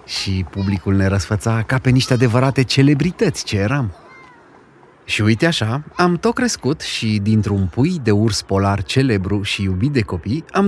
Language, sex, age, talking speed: Romanian, male, 30-49, 165 wpm